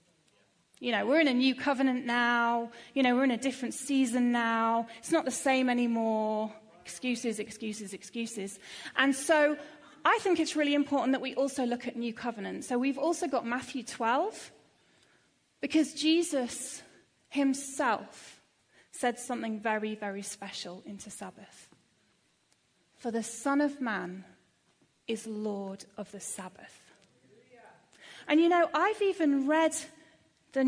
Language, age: English, 30-49